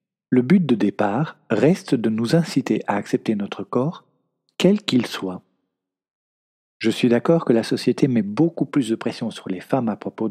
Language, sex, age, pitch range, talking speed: French, male, 50-69, 110-155 Hz, 180 wpm